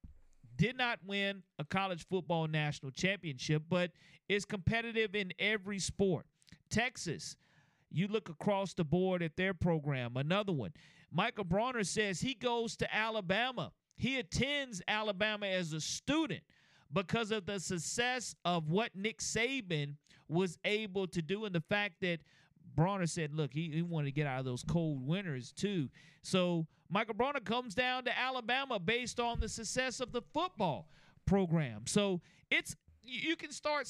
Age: 40-59